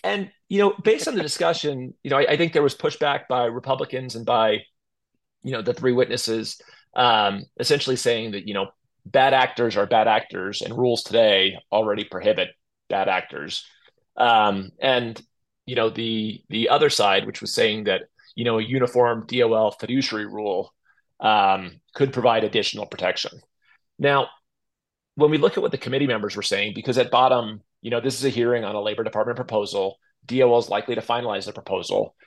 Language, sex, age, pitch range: English, male, 30-49, 105-130 Hz